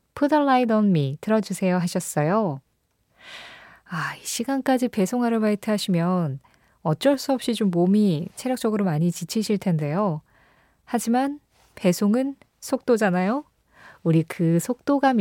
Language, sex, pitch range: Korean, female, 165-240 Hz